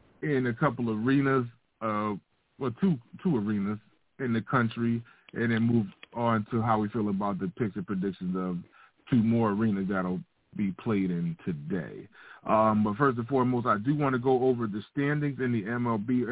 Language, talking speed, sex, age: English, 190 wpm, male, 30-49